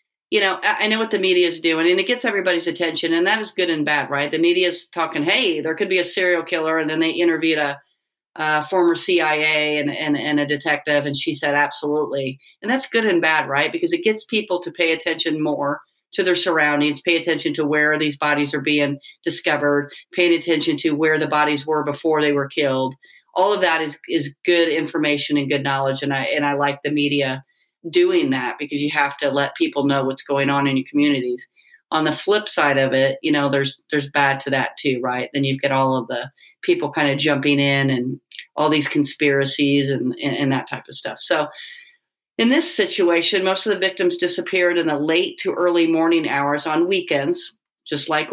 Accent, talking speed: American, 215 wpm